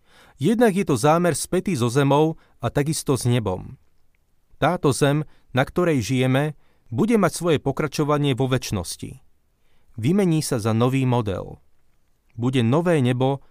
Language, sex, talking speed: Slovak, male, 135 wpm